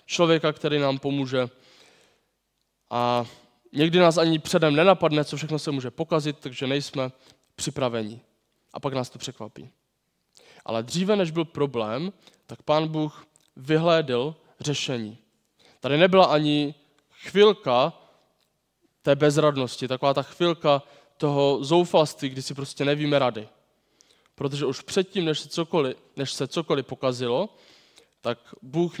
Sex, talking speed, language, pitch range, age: male, 120 wpm, Czech, 130-155 Hz, 20-39